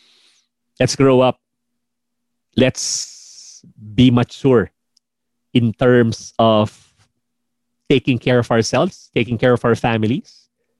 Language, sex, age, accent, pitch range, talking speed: English, male, 30-49, Filipino, 115-140 Hz, 100 wpm